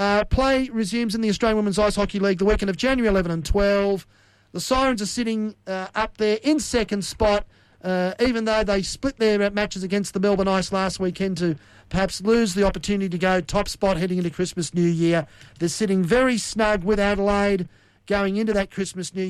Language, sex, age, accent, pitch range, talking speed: English, male, 40-59, Australian, 185-230 Hz, 200 wpm